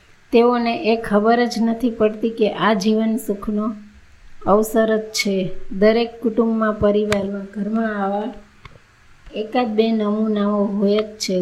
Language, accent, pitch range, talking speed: Gujarati, native, 200-225 Hz, 120 wpm